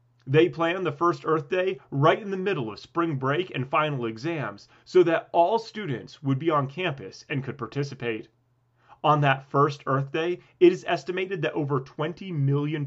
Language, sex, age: English, male, 30-49